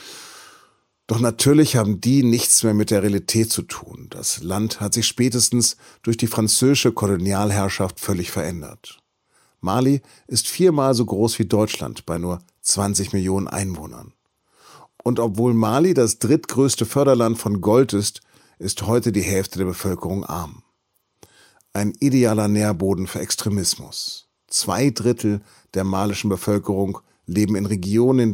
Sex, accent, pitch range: male, German, 100-120 Hz